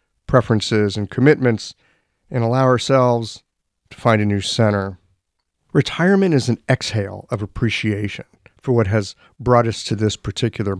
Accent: American